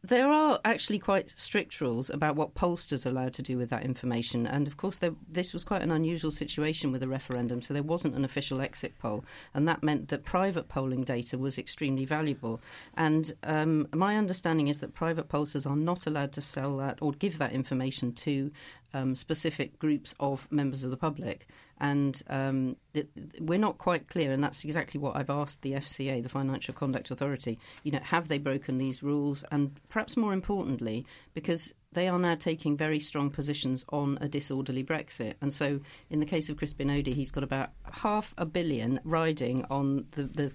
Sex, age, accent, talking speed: female, 40-59, British, 195 wpm